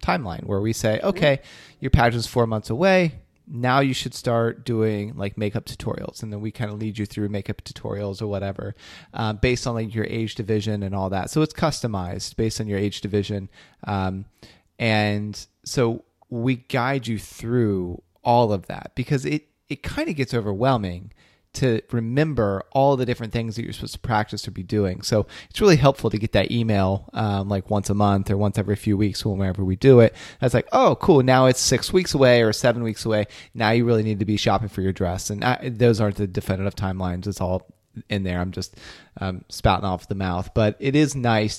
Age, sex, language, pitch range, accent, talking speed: 30-49, male, English, 100-120 Hz, American, 210 wpm